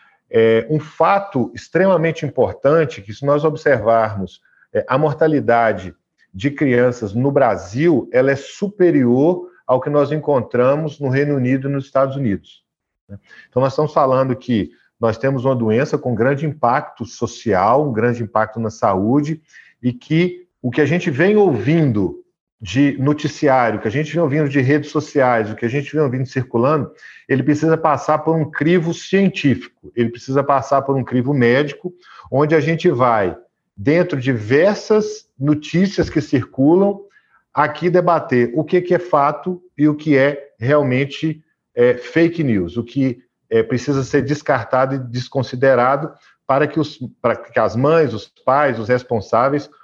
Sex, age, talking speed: male, 40-59, 150 wpm